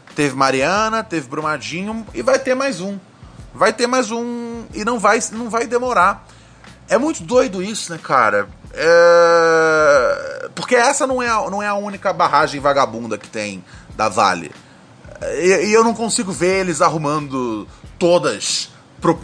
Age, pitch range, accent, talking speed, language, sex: 20-39, 150-225 Hz, Brazilian, 145 wpm, Portuguese, male